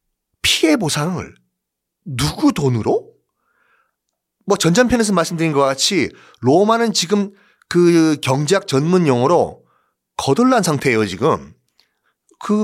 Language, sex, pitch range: Korean, male, 150-230 Hz